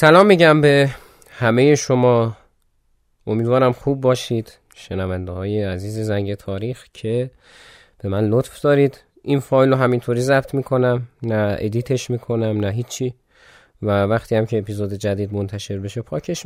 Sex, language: male, Persian